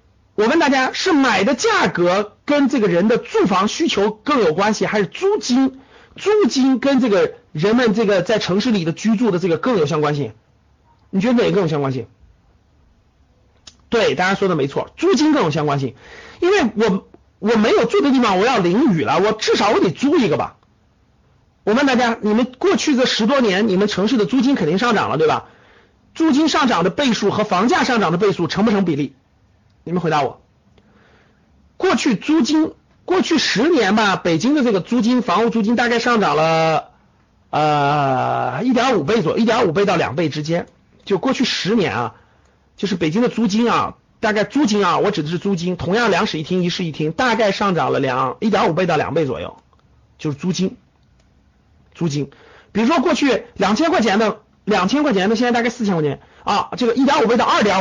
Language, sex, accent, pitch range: Chinese, male, native, 160-245 Hz